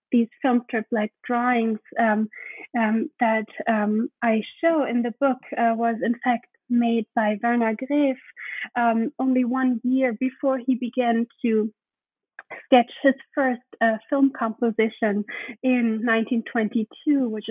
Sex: female